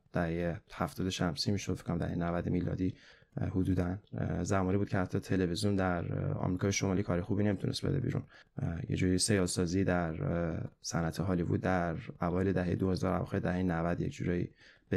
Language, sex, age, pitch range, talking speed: Persian, male, 20-39, 90-100 Hz, 155 wpm